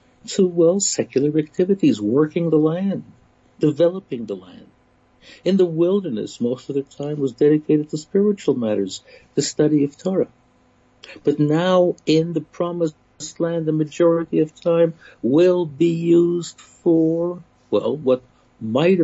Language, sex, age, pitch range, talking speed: English, male, 60-79, 150-190 Hz, 135 wpm